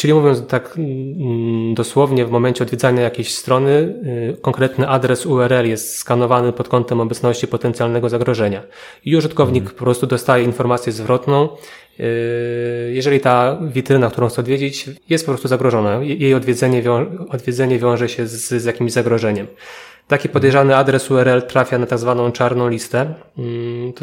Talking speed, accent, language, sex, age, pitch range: 135 wpm, native, Polish, male, 20-39, 120-135 Hz